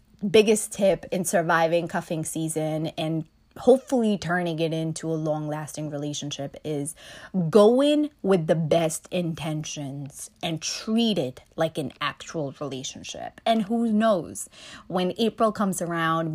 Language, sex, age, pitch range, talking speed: English, female, 20-39, 160-220 Hz, 125 wpm